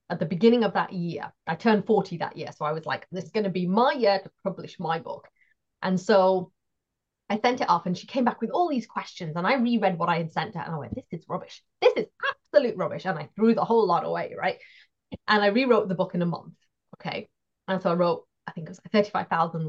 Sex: female